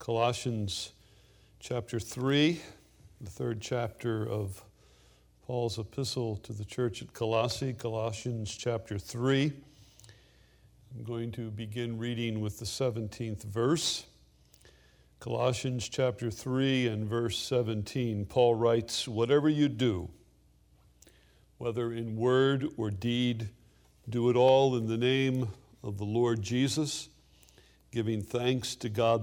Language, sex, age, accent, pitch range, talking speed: English, male, 60-79, American, 100-120 Hz, 115 wpm